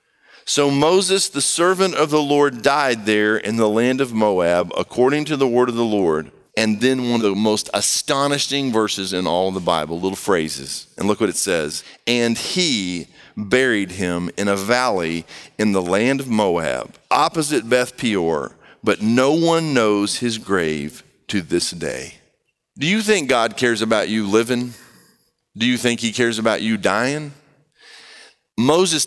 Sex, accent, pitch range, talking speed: male, American, 105-135 Hz, 170 wpm